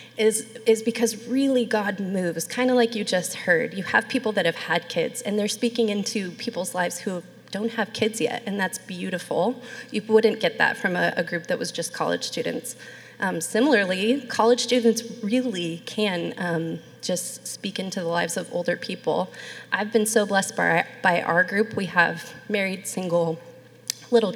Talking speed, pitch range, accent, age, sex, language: 180 wpm, 180-230 Hz, American, 30-49, female, English